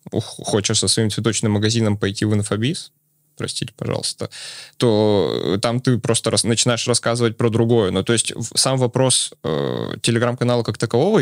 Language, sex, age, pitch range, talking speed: Russian, male, 20-39, 110-130 Hz, 150 wpm